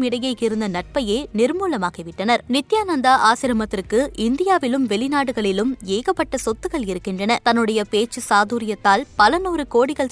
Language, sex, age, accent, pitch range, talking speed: Tamil, female, 20-39, native, 205-265 Hz, 95 wpm